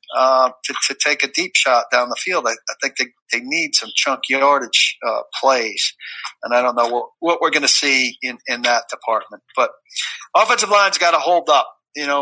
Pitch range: 120-155 Hz